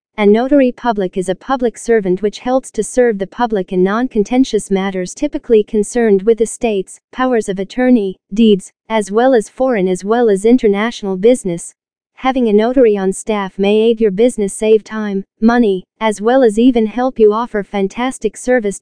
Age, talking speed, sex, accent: 40-59, 170 wpm, female, American